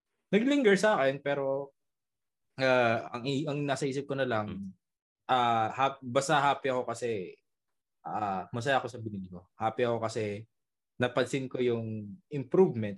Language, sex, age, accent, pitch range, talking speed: Filipino, male, 20-39, native, 100-140 Hz, 145 wpm